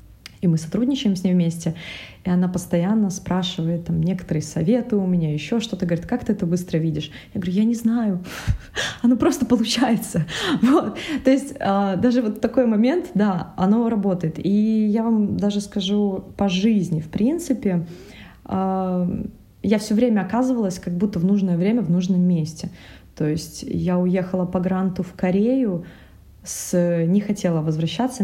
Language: Russian